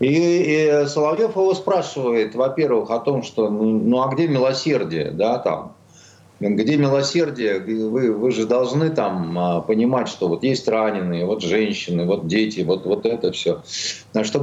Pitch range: 110-145 Hz